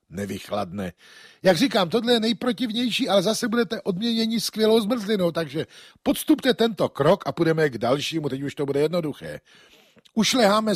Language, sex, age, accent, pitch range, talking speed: Czech, male, 50-69, native, 130-215 Hz, 145 wpm